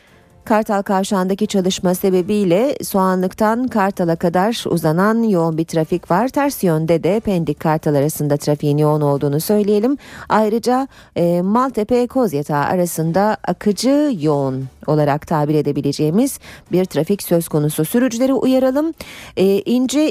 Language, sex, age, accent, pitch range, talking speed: Turkish, female, 40-59, native, 165-230 Hz, 115 wpm